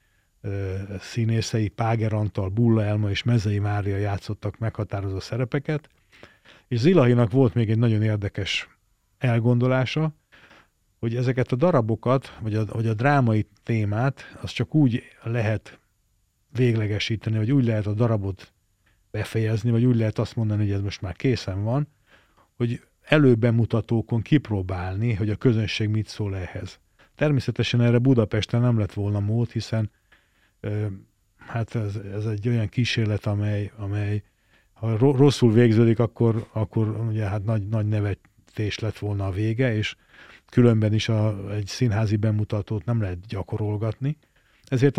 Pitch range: 105-120 Hz